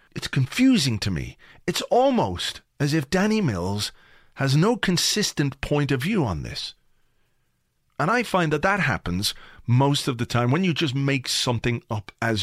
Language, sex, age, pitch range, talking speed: English, male, 40-59, 115-175 Hz, 170 wpm